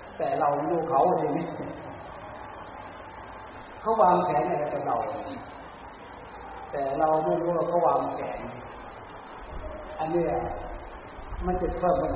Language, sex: Thai, male